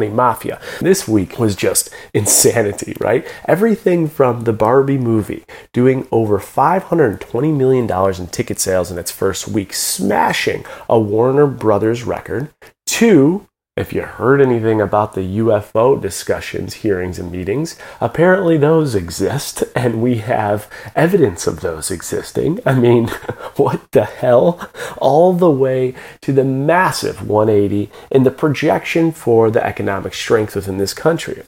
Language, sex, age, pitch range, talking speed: English, male, 30-49, 105-160 Hz, 135 wpm